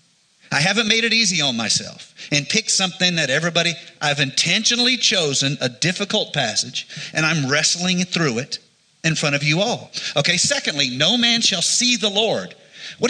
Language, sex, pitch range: English, male, 155-230 Hz